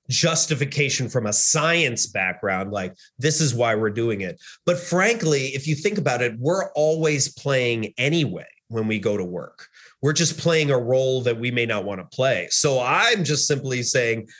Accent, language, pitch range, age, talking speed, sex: American, English, 120-155 Hz, 30-49, 190 wpm, male